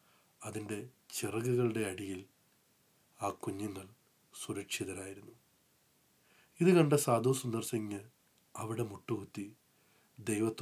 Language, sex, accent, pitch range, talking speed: English, male, Indian, 105-125 Hz, 95 wpm